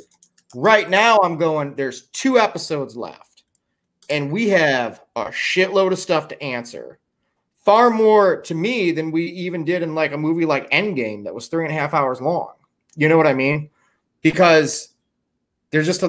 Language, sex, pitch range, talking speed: English, male, 135-180 Hz, 175 wpm